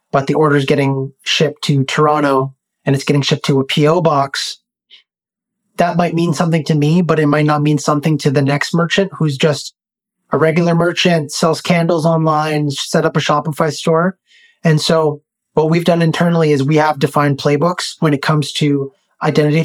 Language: English